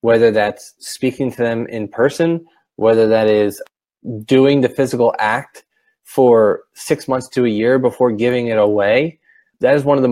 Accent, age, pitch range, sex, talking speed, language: American, 20-39, 105-125 Hz, male, 170 wpm, English